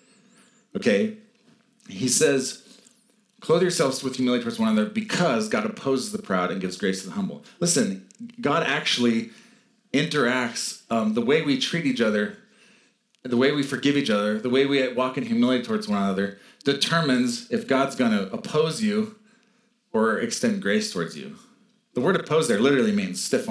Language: English